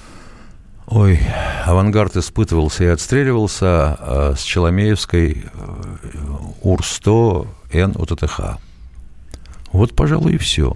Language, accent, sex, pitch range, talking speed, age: Russian, native, male, 80-105 Hz, 85 wpm, 60-79